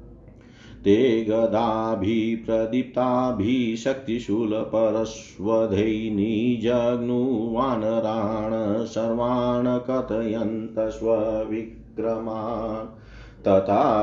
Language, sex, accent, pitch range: Hindi, male, native, 110-120 Hz